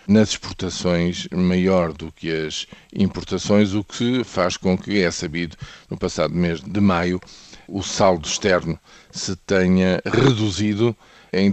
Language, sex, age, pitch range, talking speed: Portuguese, male, 50-69, 90-110 Hz, 135 wpm